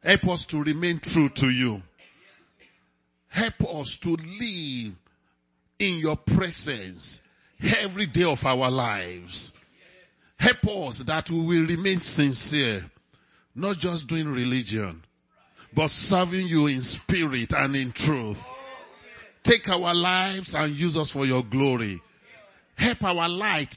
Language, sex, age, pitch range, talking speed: English, male, 50-69, 130-185 Hz, 125 wpm